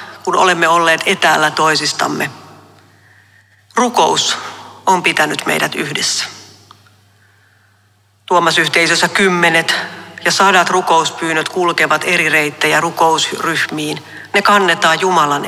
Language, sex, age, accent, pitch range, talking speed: Finnish, female, 40-59, native, 100-170 Hz, 90 wpm